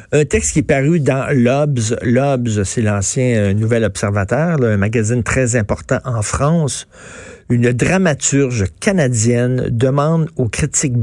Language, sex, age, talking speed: French, male, 50-69, 130 wpm